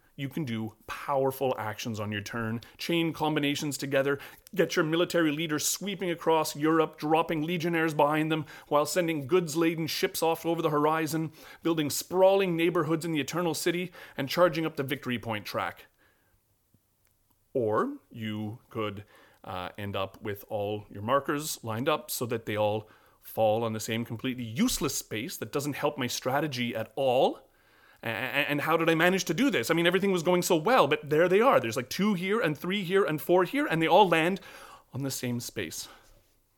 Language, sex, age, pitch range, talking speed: English, male, 30-49, 115-170 Hz, 180 wpm